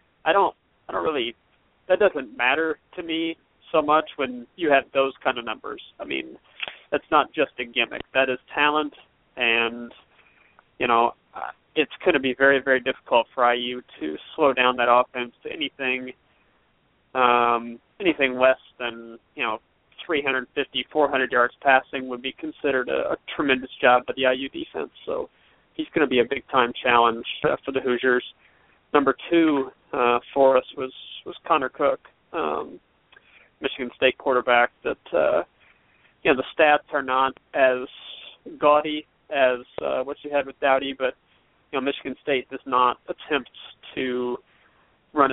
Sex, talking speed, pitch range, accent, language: male, 160 wpm, 120-140 Hz, American, English